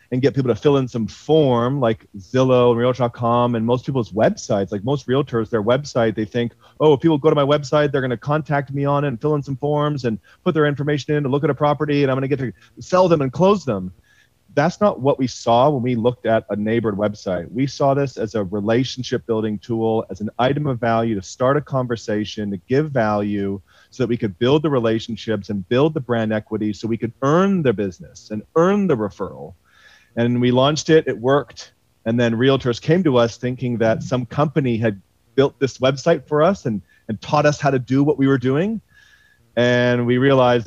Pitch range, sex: 115-140 Hz, male